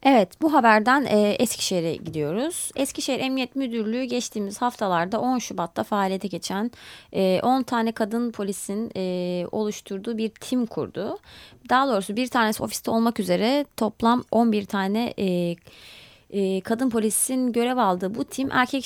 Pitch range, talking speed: 195-245 Hz, 125 wpm